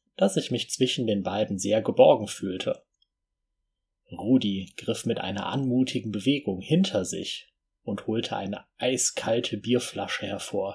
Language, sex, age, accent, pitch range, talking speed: German, male, 30-49, German, 95-125 Hz, 130 wpm